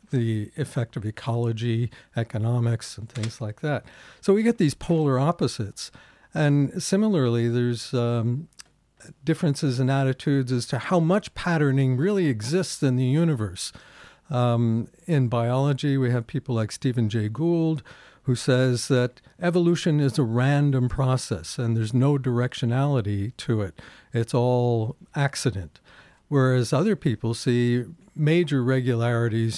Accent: American